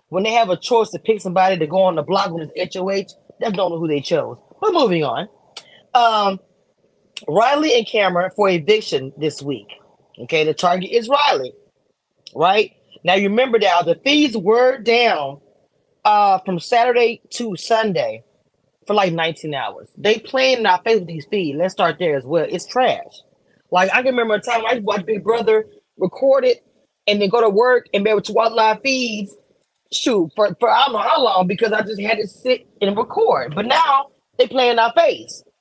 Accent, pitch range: American, 175-235 Hz